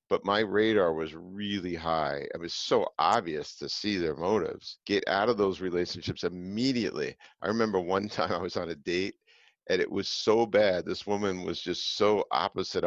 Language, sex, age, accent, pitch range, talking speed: English, male, 50-69, American, 90-140 Hz, 185 wpm